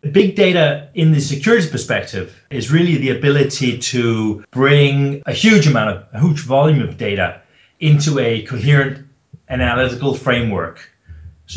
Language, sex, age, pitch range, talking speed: English, male, 30-49, 110-145 Hz, 145 wpm